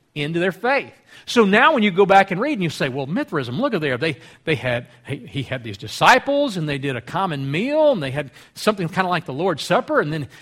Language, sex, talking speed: English, male, 260 wpm